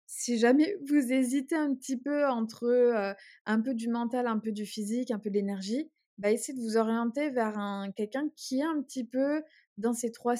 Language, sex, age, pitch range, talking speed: French, female, 20-39, 205-250 Hz, 215 wpm